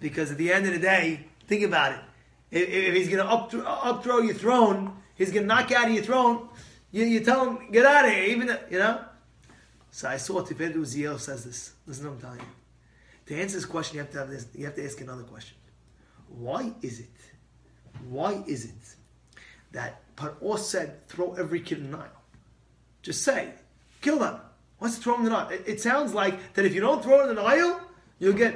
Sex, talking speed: male, 225 wpm